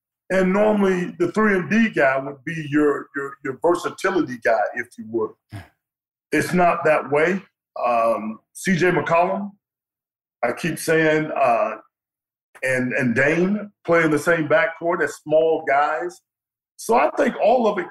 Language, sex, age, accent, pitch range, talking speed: English, male, 50-69, American, 135-170 Hz, 140 wpm